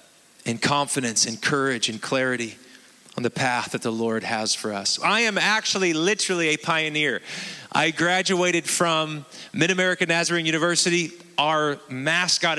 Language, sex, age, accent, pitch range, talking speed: English, male, 30-49, American, 150-195 Hz, 145 wpm